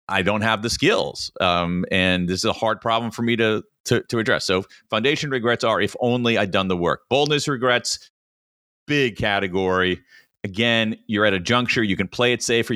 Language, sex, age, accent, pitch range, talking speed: English, male, 40-59, American, 95-125 Hz, 200 wpm